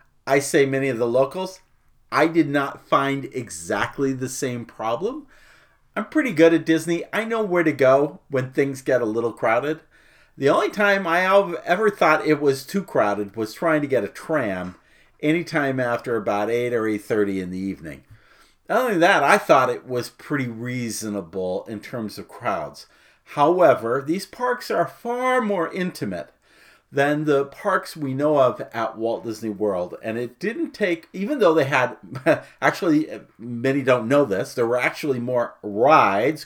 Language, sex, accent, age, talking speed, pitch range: English, male, American, 50-69, 170 wpm, 110-165 Hz